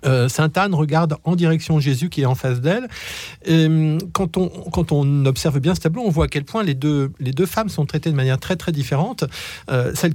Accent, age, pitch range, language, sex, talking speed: French, 50-69, 125-160 Hz, French, male, 230 wpm